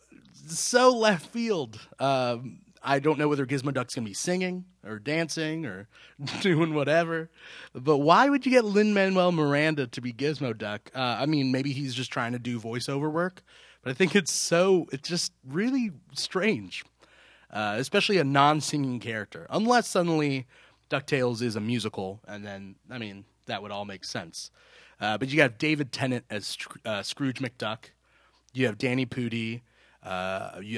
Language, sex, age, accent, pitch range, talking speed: English, male, 30-49, American, 115-165 Hz, 170 wpm